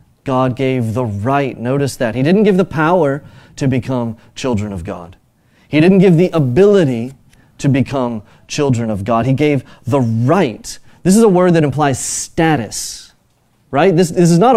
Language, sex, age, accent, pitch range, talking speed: English, male, 30-49, American, 125-165 Hz, 175 wpm